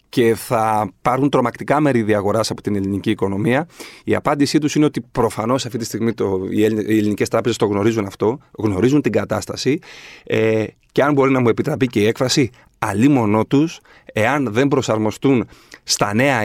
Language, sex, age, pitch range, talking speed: Greek, male, 40-59, 110-140 Hz, 170 wpm